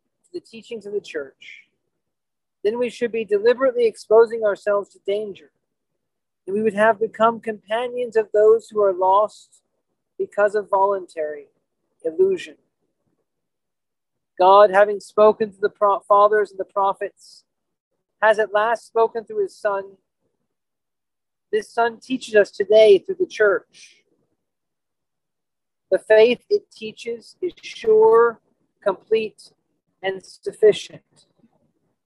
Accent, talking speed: American, 120 wpm